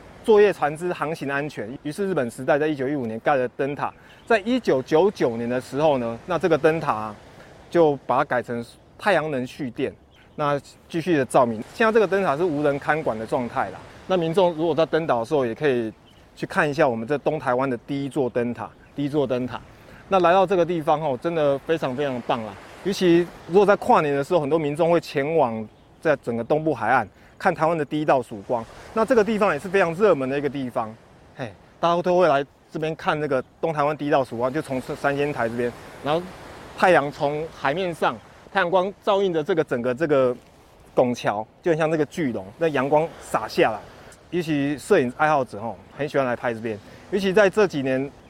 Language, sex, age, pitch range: Chinese, male, 20-39, 125-170 Hz